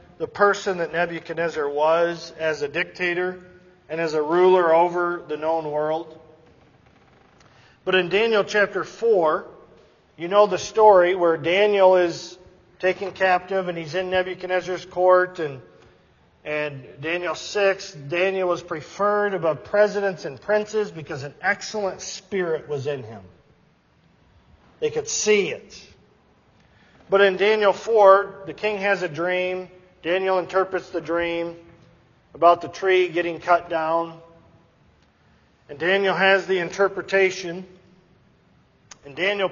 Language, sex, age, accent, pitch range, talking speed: English, male, 40-59, American, 165-195 Hz, 125 wpm